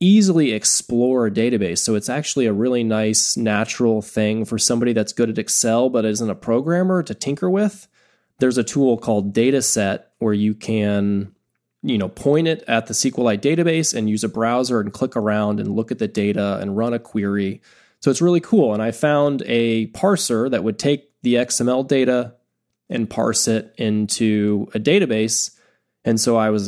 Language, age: English, 20-39